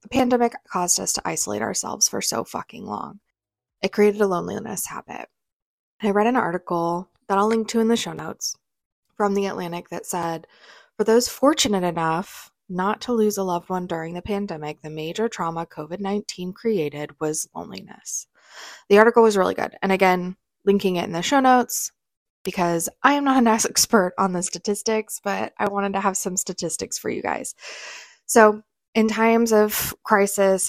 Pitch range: 175-220 Hz